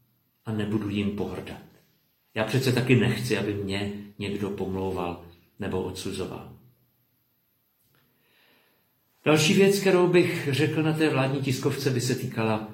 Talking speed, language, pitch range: 125 wpm, Czech, 105-135 Hz